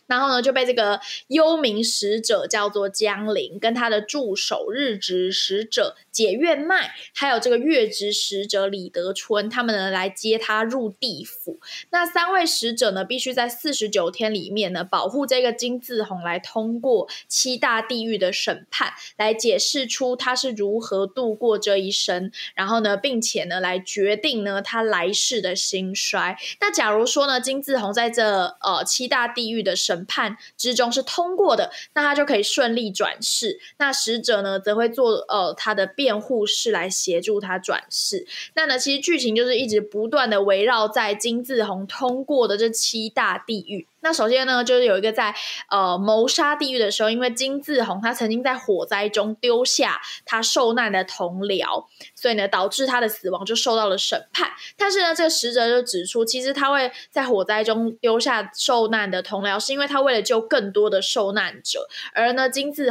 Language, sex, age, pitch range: Chinese, female, 10-29, 200-255 Hz